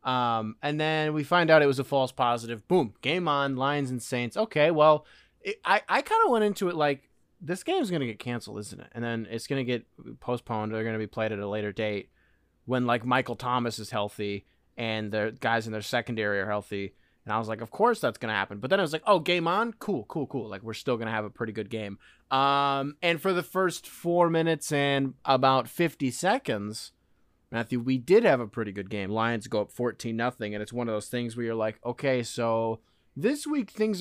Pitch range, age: 105-145 Hz, 20-39